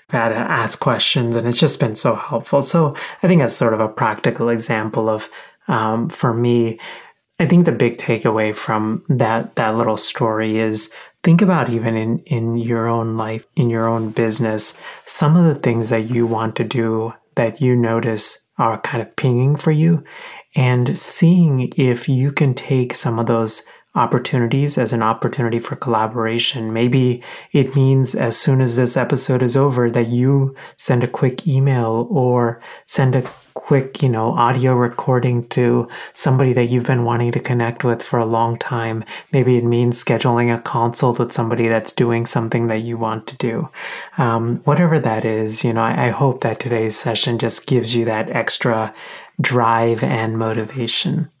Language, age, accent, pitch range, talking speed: English, 30-49, American, 115-135 Hz, 175 wpm